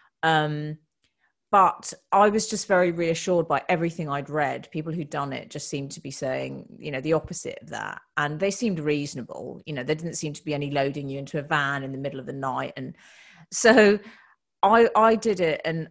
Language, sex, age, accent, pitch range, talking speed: English, female, 40-59, British, 155-210 Hz, 210 wpm